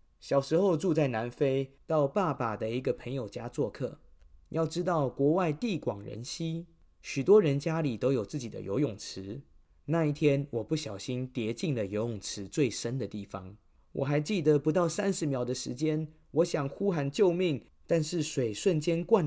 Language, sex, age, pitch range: Chinese, male, 20-39, 110-155 Hz